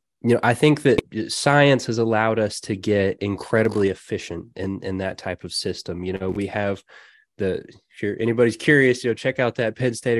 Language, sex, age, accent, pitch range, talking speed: English, male, 20-39, American, 95-120 Hz, 205 wpm